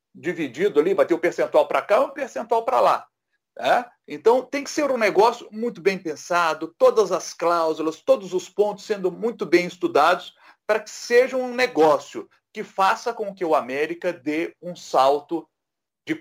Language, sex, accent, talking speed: Portuguese, male, Brazilian, 185 wpm